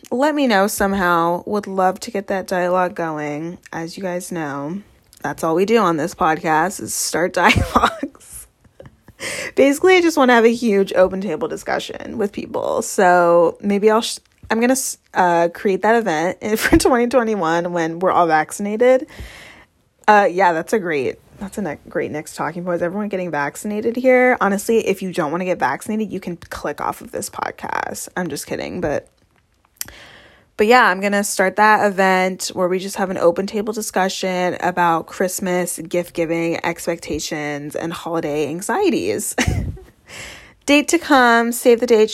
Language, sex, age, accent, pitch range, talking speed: English, female, 20-39, American, 175-235 Hz, 170 wpm